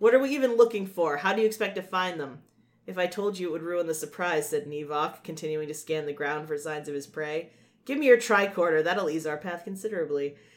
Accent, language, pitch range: American, English, 155-190 Hz